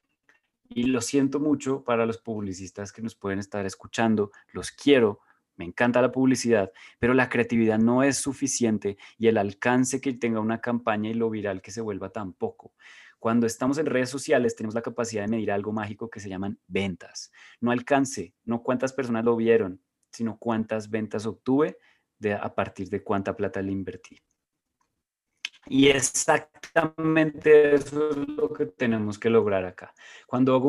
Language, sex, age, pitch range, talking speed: Spanish, male, 20-39, 110-135 Hz, 165 wpm